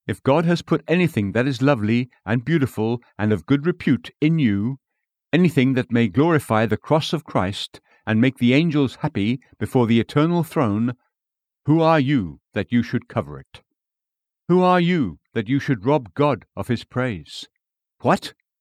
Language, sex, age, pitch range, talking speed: English, male, 60-79, 115-155 Hz, 170 wpm